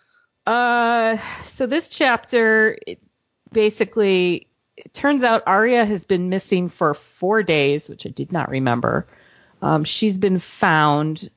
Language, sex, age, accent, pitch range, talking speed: English, female, 40-59, American, 140-170 Hz, 130 wpm